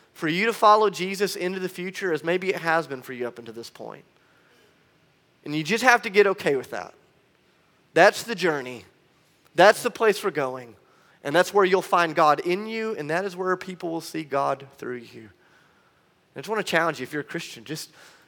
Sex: male